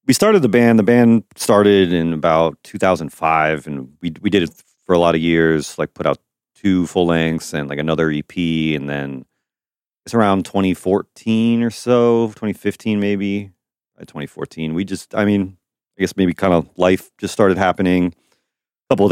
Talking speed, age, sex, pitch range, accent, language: 175 wpm, 30-49, male, 75-95 Hz, American, English